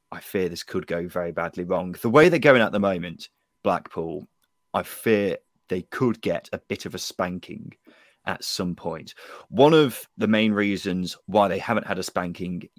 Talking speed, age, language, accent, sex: 190 wpm, 20-39, English, British, male